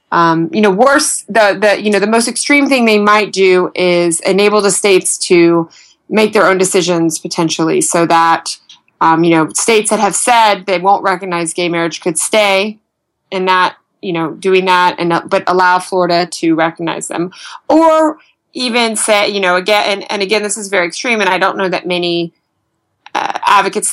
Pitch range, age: 175-210 Hz, 20-39